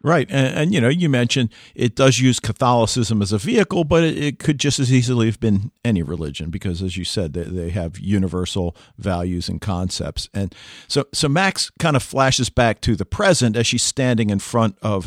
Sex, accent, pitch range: male, American, 100-125 Hz